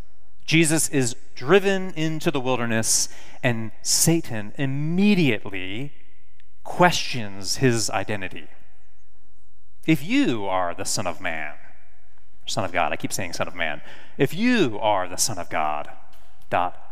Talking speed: 130 wpm